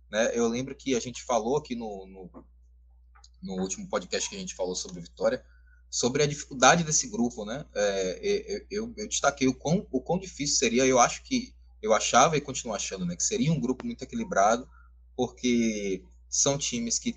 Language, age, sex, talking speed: Portuguese, 20-39, male, 190 wpm